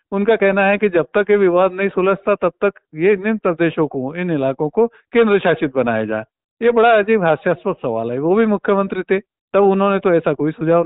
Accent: native